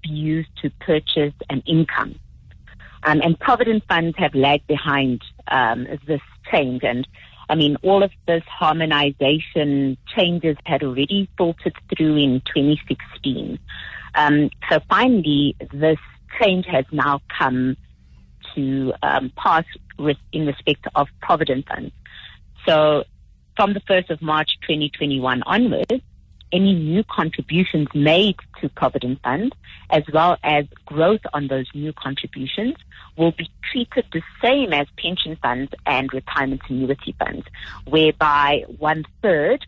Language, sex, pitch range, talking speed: English, female, 135-165 Hz, 125 wpm